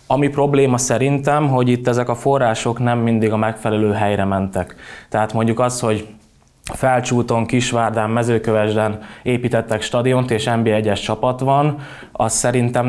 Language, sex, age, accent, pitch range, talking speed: English, male, 20-39, Finnish, 105-120 Hz, 140 wpm